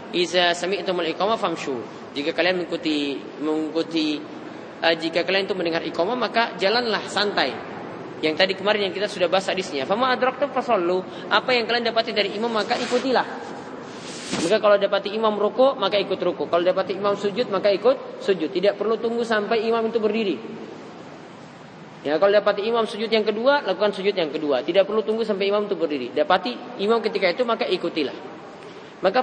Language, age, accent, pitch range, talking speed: English, 20-39, Indonesian, 185-235 Hz, 155 wpm